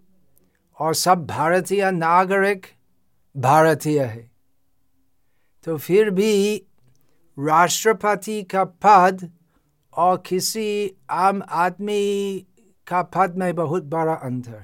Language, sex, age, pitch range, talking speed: Hindi, male, 60-79, 115-190 Hz, 90 wpm